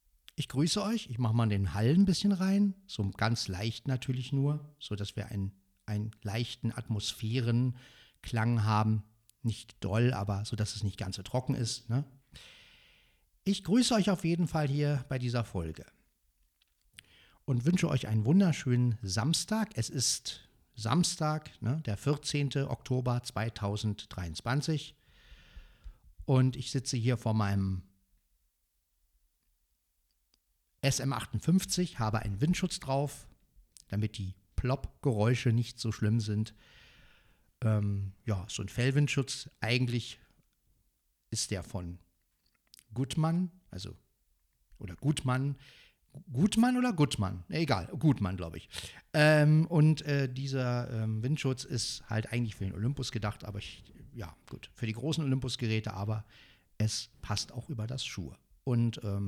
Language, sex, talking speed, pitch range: German, male, 130 wpm, 100-140 Hz